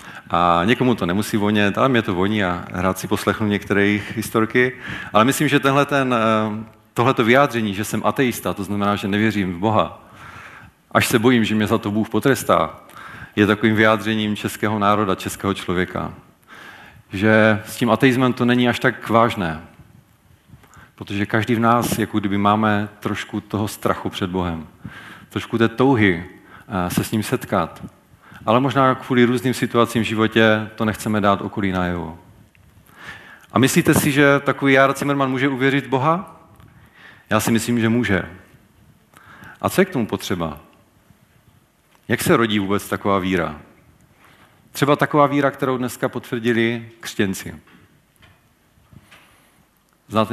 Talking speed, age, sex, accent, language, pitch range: 145 wpm, 40-59, male, native, Czech, 100-125 Hz